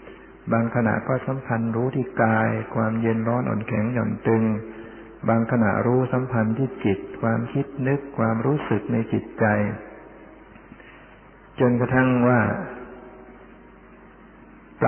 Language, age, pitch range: Thai, 60-79, 110-125 Hz